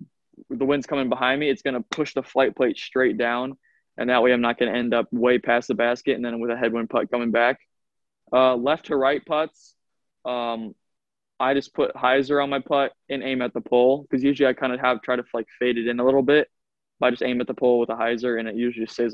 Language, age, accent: English, 20-39, American